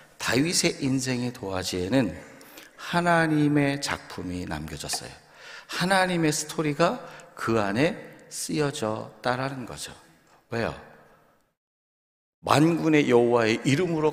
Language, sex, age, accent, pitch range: Korean, male, 40-59, native, 105-155 Hz